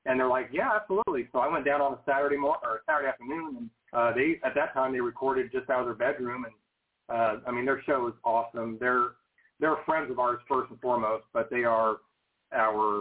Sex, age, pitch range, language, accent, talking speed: male, 30-49, 115-145 Hz, English, American, 230 wpm